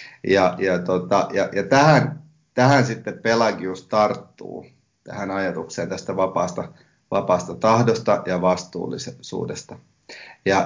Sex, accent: male, native